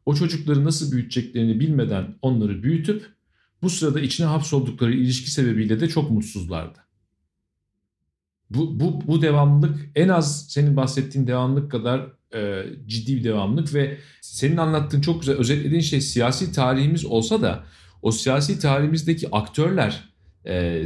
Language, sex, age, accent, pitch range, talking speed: Turkish, male, 40-59, native, 125-155 Hz, 130 wpm